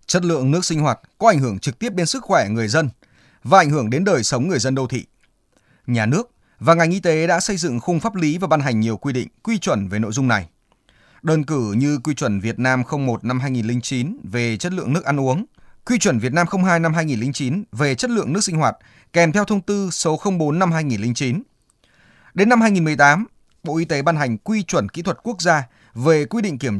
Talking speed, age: 235 wpm, 20-39